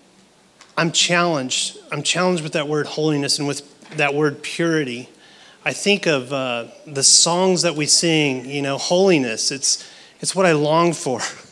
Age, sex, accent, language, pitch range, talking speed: 30-49, male, American, English, 145-190 Hz, 160 wpm